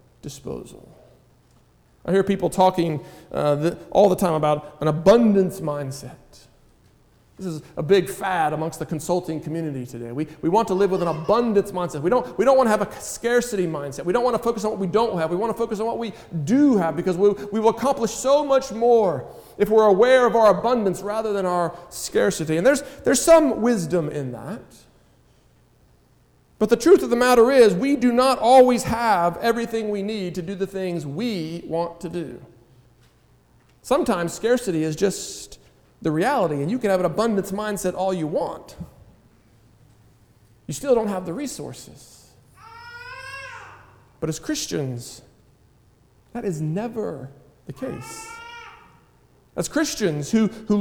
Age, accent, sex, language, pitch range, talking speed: 40-59, American, male, English, 160-235 Hz, 170 wpm